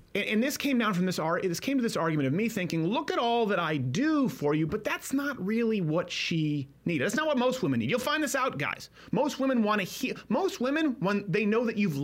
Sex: male